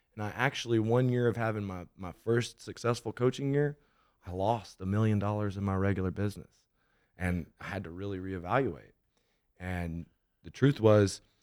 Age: 20-39